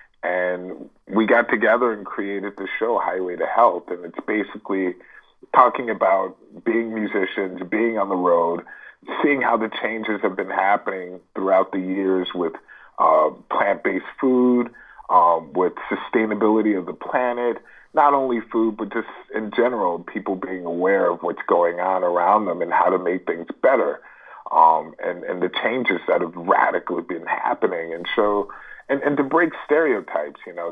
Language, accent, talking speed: English, American, 160 wpm